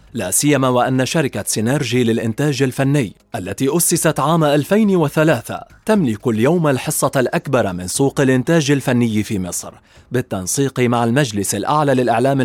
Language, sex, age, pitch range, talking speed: Arabic, male, 30-49, 115-165 Hz, 125 wpm